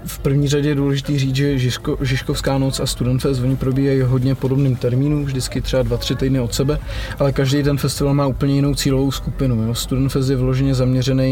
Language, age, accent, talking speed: Czech, 20-39, native, 205 wpm